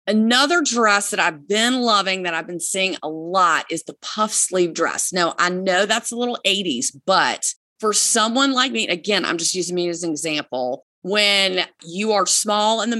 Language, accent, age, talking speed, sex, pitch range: English, American, 30-49, 200 wpm, female, 175-225 Hz